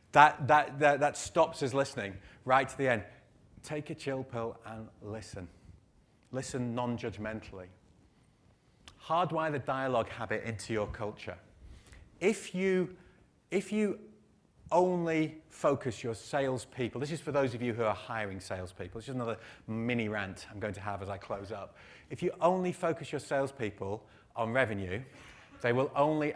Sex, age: male, 30-49